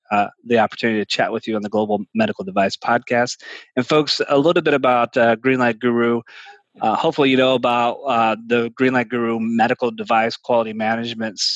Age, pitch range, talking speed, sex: 30-49, 110-125 Hz, 180 wpm, male